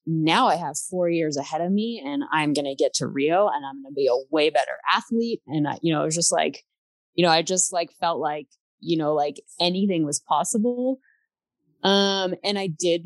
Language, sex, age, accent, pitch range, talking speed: English, female, 20-39, American, 155-190 Hz, 225 wpm